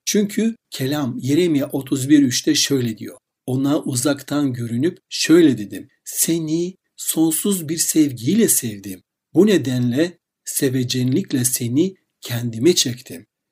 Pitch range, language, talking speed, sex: 130-180 Hz, Turkish, 100 wpm, male